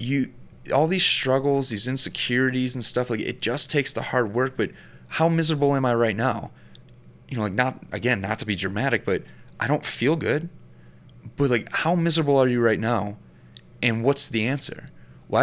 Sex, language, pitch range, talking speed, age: male, English, 110-145 Hz, 190 wpm, 30-49